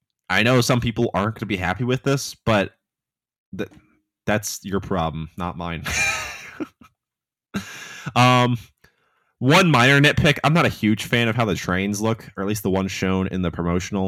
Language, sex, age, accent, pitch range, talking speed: English, male, 20-39, American, 90-125 Hz, 175 wpm